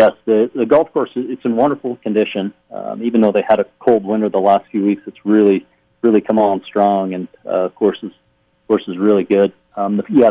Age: 40-59